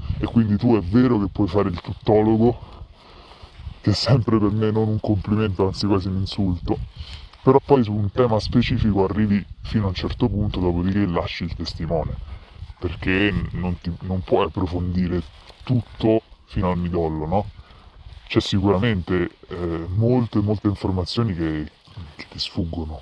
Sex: female